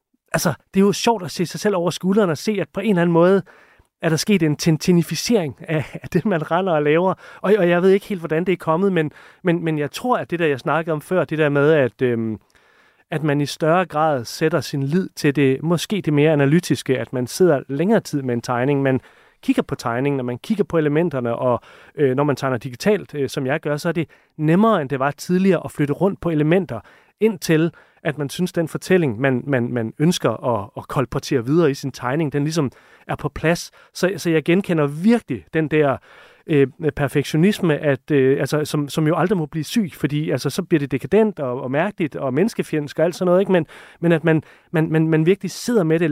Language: Danish